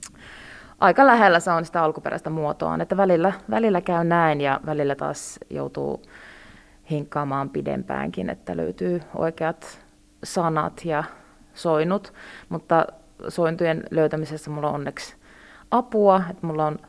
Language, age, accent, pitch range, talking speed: Finnish, 30-49, native, 145-175 Hz, 120 wpm